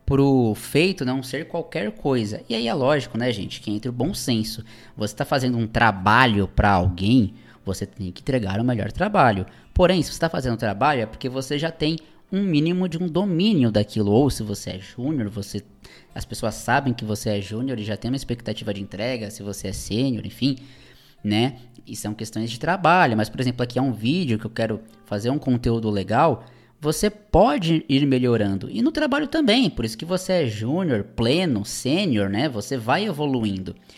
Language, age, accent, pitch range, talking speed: Portuguese, 20-39, Brazilian, 110-150 Hz, 200 wpm